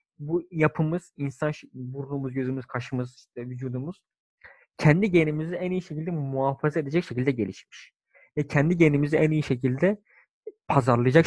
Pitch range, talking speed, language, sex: 130-200 Hz, 130 wpm, Turkish, male